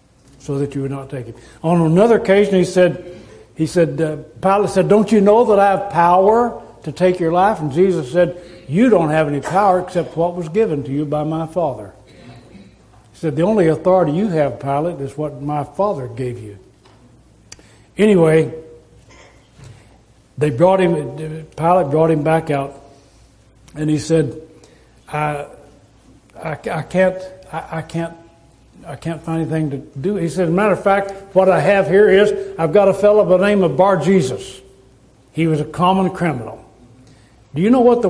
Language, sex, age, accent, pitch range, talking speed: English, male, 60-79, American, 130-180 Hz, 180 wpm